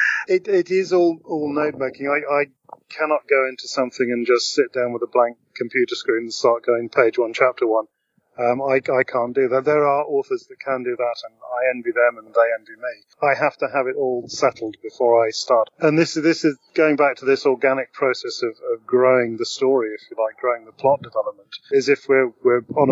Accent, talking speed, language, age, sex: British, 230 wpm, English, 40-59, male